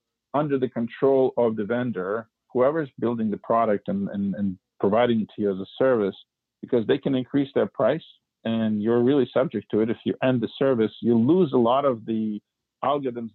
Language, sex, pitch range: English, male, 105-130 Hz